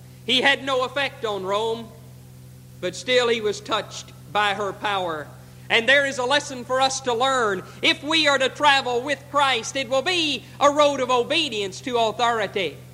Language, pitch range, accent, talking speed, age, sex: English, 175-275 Hz, American, 180 wpm, 50-69, male